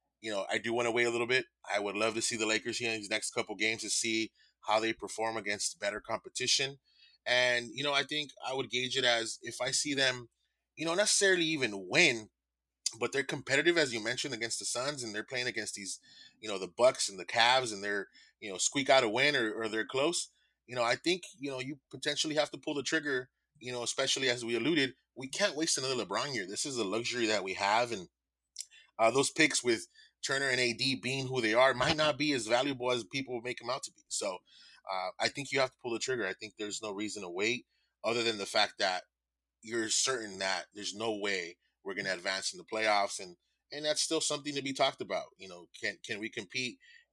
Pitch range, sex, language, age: 110-140 Hz, male, English, 20-39